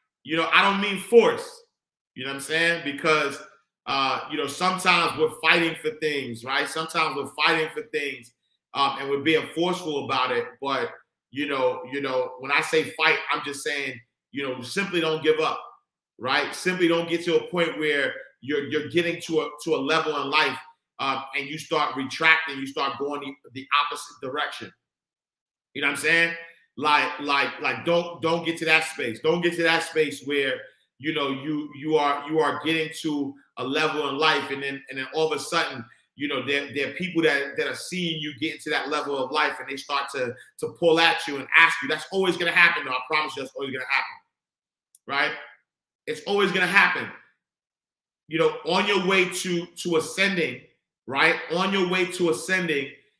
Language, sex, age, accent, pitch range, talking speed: English, male, 40-59, American, 145-175 Hz, 205 wpm